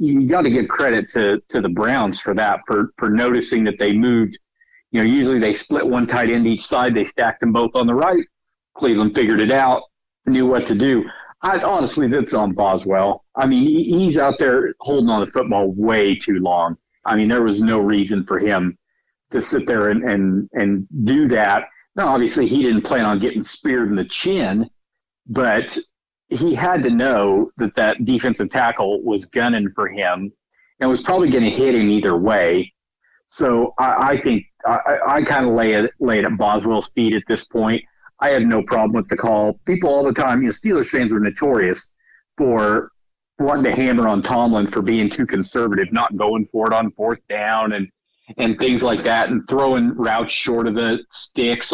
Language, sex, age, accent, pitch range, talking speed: English, male, 50-69, American, 105-130 Hz, 200 wpm